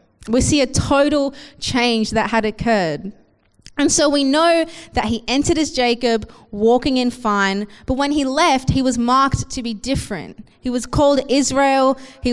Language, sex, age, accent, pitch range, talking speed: English, female, 20-39, Australian, 220-270 Hz, 170 wpm